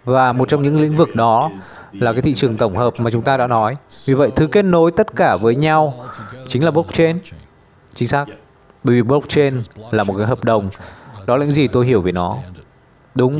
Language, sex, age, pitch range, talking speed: Vietnamese, male, 20-39, 110-145 Hz, 220 wpm